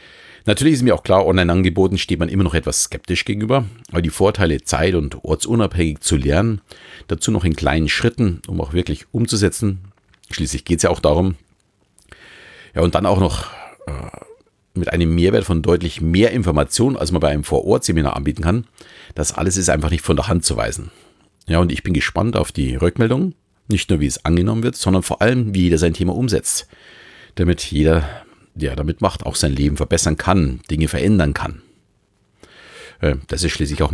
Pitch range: 80-105 Hz